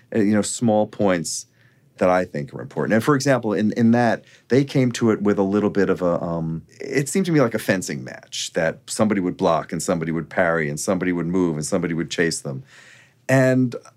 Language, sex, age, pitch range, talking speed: English, male, 40-59, 85-120 Hz, 225 wpm